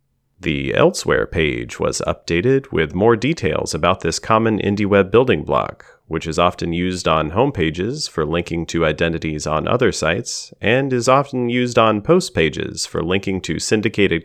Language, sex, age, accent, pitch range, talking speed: English, male, 30-49, American, 85-115 Hz, 170 wpm